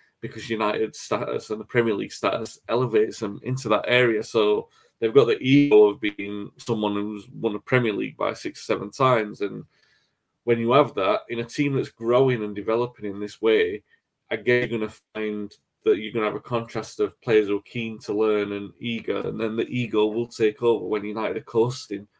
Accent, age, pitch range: British, 30-49, 105-130 Hz